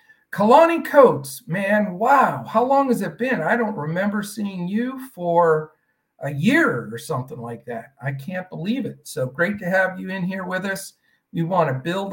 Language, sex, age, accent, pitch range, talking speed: English, male, 50-69, American, 150-205 Hz, 185 wpm